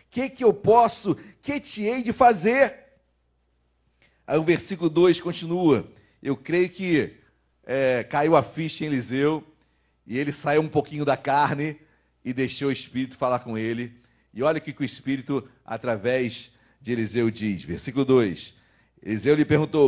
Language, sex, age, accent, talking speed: Portuguese, male, 40-59, Brazilian, 165 wpm